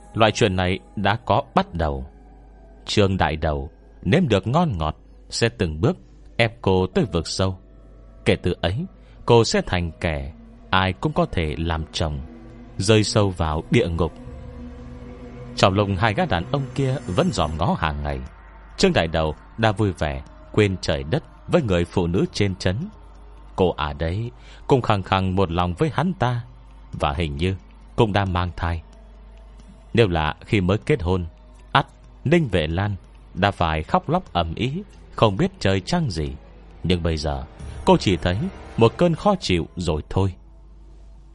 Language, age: Vietnamese, 30-49